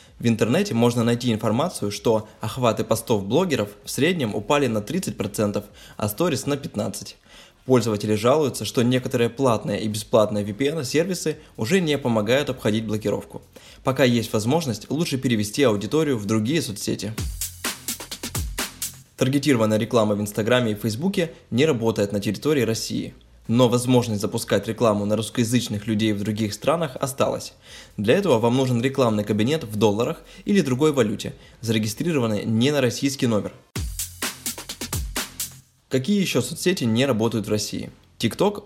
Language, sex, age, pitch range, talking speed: Russian, male, 20-39, 105-130 Hz, 135 wpm